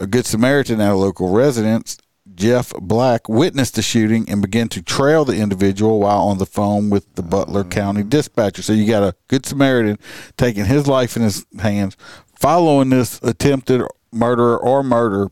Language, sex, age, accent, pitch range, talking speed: English, male, 50-69, American, 100-125 Hz, 175 wpm